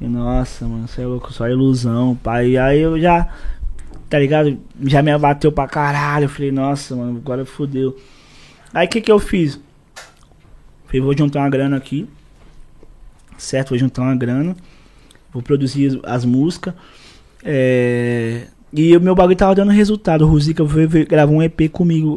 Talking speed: 165 wpm